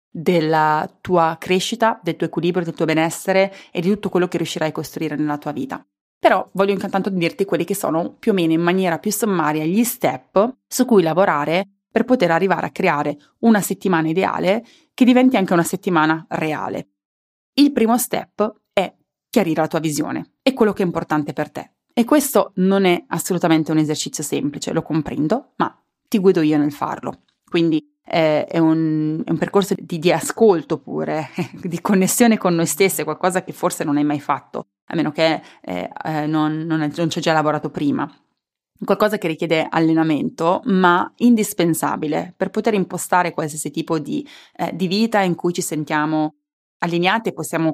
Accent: native